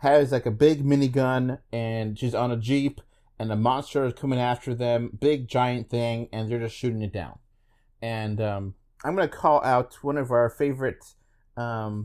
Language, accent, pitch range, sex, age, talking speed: English, American, 110-135 Hz, male, 30-49, 190 wpm